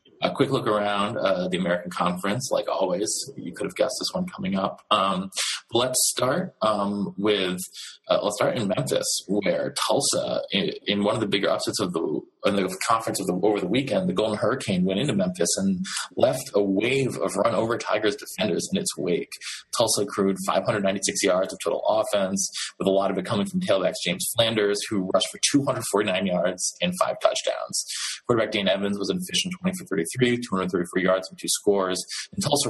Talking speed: 200 wpm